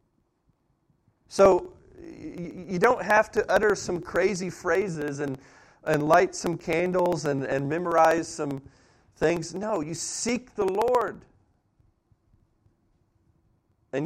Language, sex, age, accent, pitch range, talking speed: English, male, 40-59, American, 110-160 Hz, 105 wpm